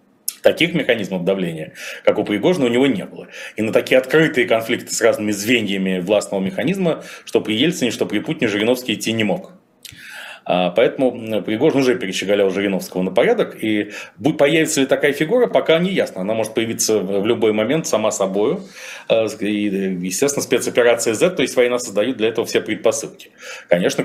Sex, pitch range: male, 95-125 Hz